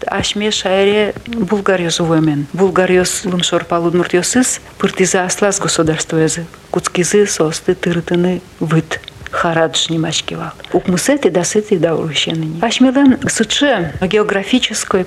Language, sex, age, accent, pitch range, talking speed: Russian, female, 50-69, native, 175-220 Hz, 95 wpm